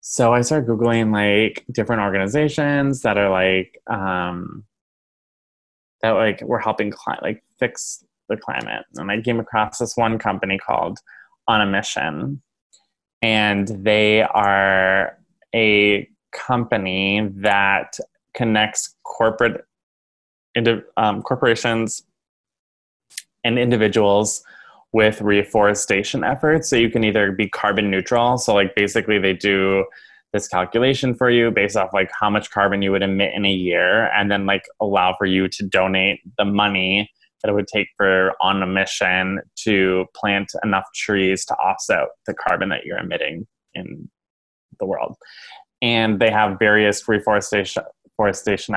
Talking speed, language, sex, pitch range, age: 135 wpm, English, male, 95-115 Hz, 20-39